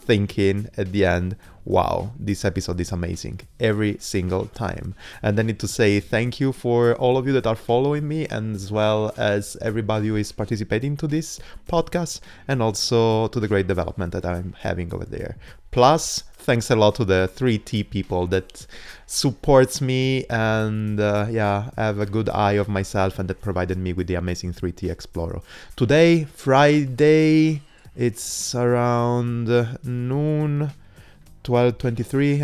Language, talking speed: English, 155 wpm